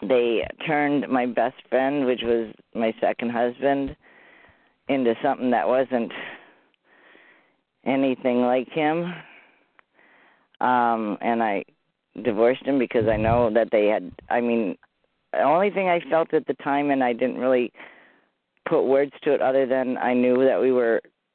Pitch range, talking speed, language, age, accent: 115-135 Hz, 150 wpm, English, 40-59, American